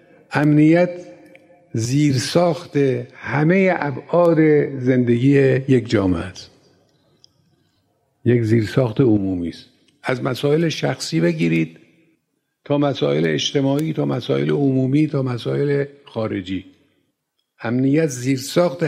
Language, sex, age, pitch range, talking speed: Persian, male, 50-69, 125-160 Hz, 85 wpm